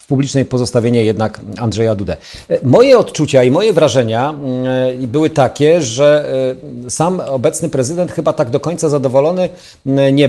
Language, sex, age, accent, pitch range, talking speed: Polish, male, 40-59, native, 115-145 Hz, 130 wpm